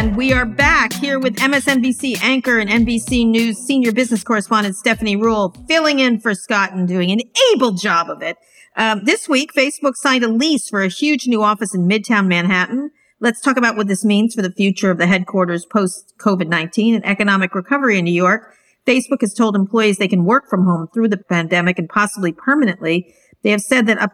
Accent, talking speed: American, 205 wpm